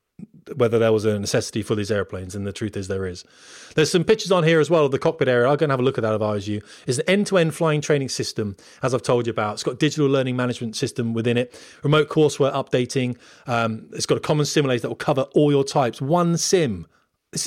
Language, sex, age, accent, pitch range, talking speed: English, male, 30-49, British, 110-150 Hz, 255 wpm